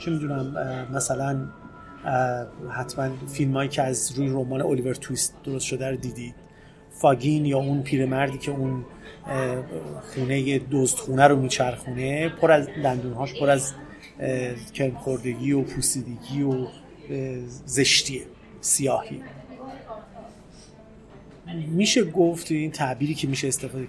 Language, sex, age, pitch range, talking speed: Persian, male, 30-49, 130-150 Hz, 110 wpm